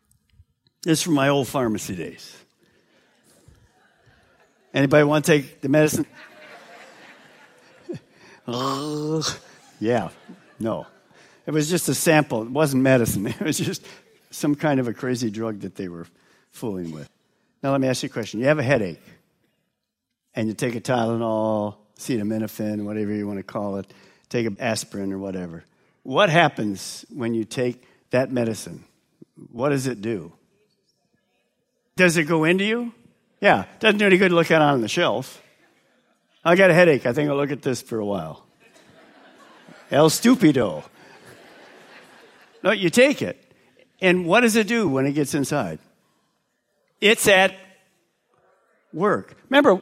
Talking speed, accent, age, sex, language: 145 wpm, American, 50-69, male, English